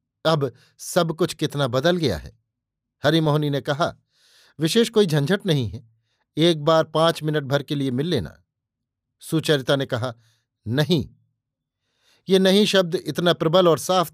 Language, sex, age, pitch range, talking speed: Hindi, male, 50-69, 130-165 Hz, 150 wpm